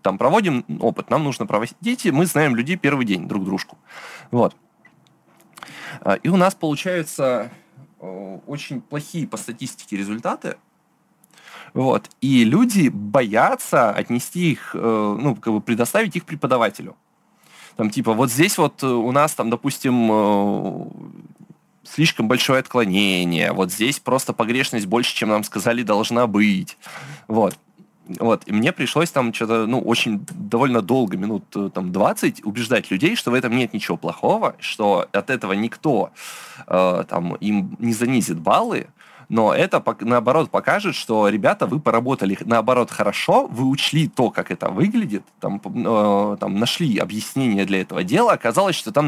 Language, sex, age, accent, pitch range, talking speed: Russian, male, 20-39, native, 105-140 Hz, 145 wpm